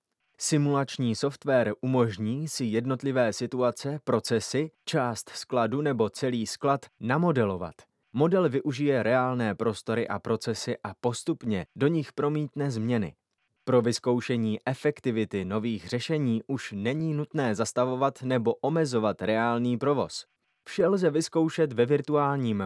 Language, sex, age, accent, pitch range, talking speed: Czech, male, 20-39, native, 115-150 Hz, 110 wpm